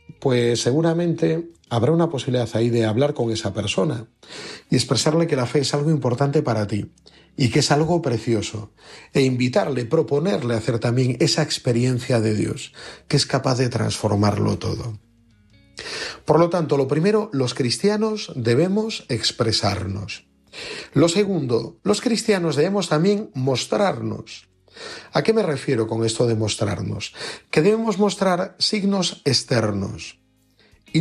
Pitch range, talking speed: 115-165 Hz, 140 wpm